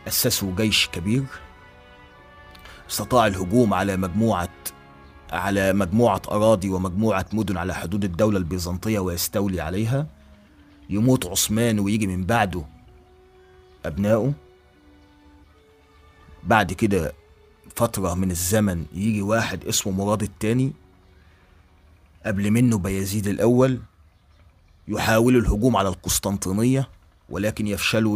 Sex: male